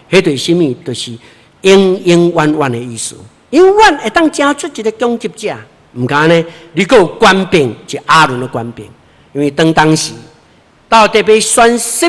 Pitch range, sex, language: 135-190 Hz, male, Chinese